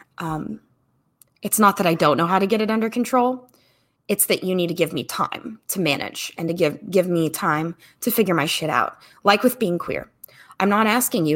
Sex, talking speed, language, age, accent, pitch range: female, 220 wpm, English, 20-39, American, 145-210 Hz